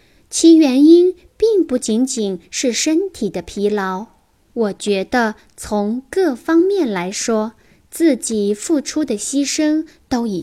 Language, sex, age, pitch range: Chinese, female, 10-29, 205-295 Hz